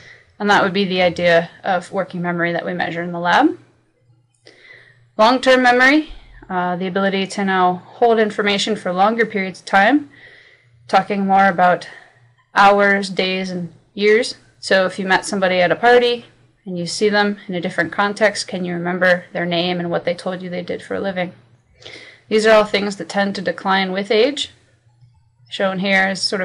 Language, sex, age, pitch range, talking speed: English, female, 20-39, 180-215 Hz, 185 wpm